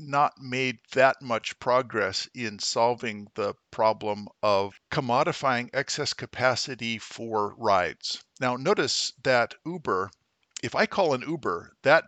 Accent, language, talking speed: American, English, 125 wpm